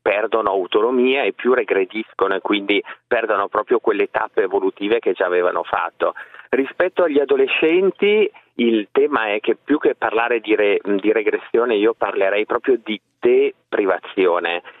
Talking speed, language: 140 wpm, Italian